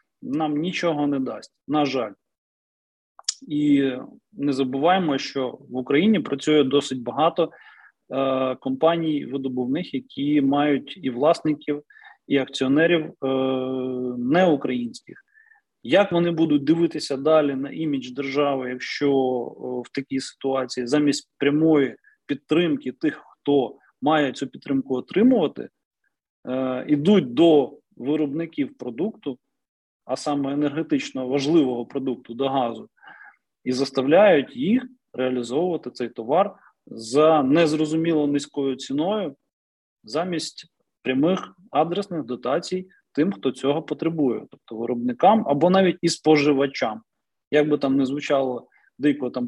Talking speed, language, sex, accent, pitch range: 110 wpm, Ukrainian, male, native, 130-165 Hz